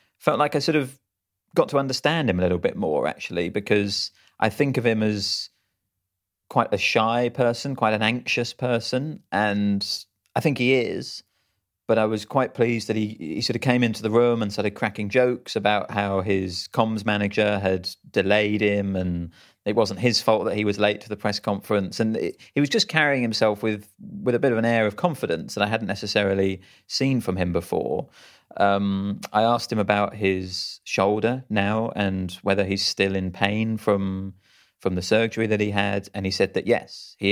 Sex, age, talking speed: male, 30-49, 195 wpm